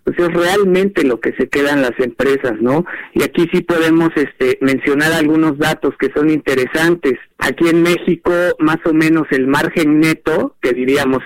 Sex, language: male, Spanish